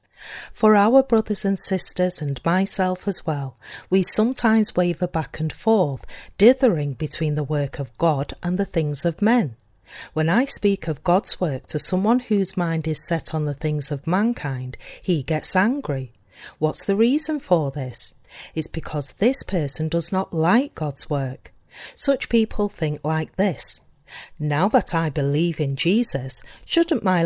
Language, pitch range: English, 150-225 Hz